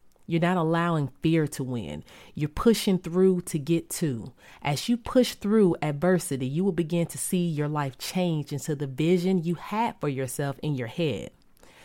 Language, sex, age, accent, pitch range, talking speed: English, female, 30-49, American, 150-225 Hz, 175 wpm